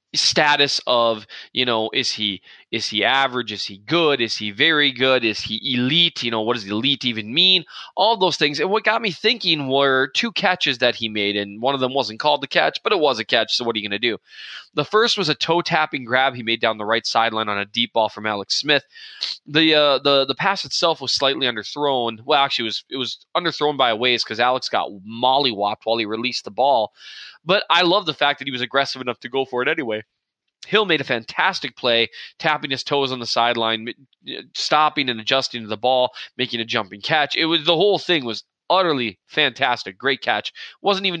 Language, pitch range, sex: English, 115-145 Hz, male